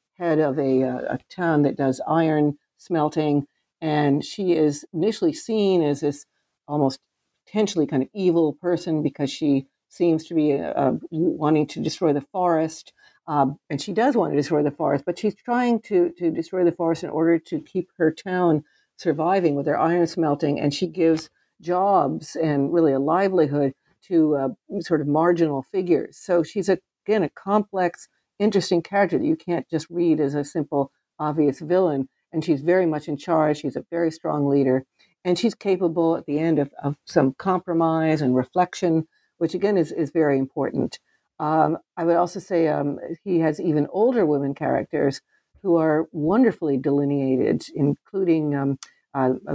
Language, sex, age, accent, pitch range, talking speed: English, female, 50-69, American, 145-175 Hz, 170 wpm